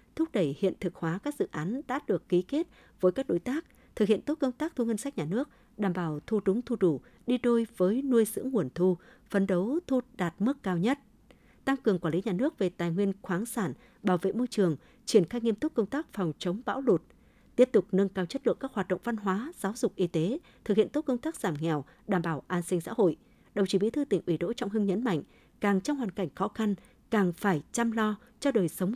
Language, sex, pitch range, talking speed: Vietnamese, female, 180-240 Hz, 255 wpm